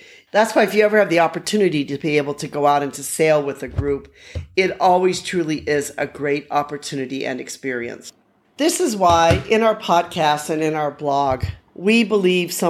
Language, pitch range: English, 140-180 Hz